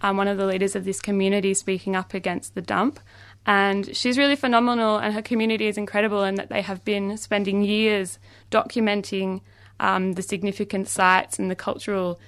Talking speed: 180 wpm